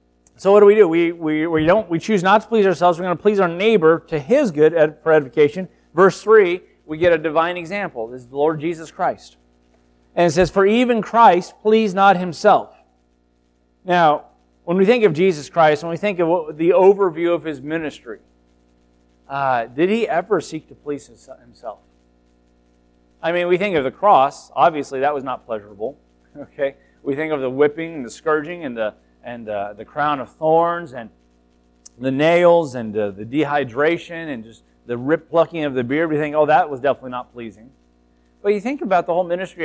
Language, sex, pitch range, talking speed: English, male, 120-180 Hz, 200 wpm